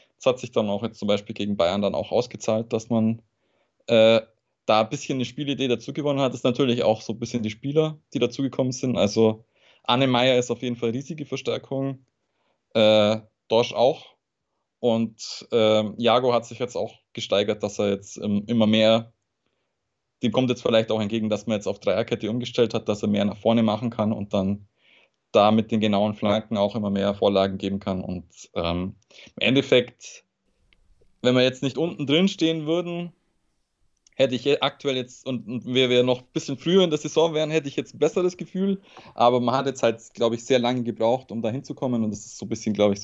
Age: 20-39